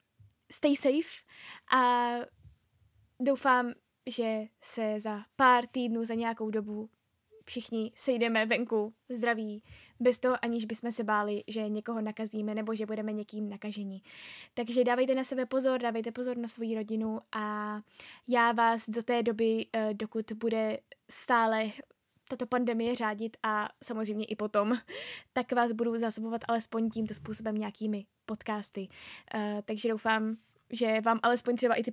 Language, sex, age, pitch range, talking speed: Czech, female, 10-29, 215-245 Hz, 140 wpm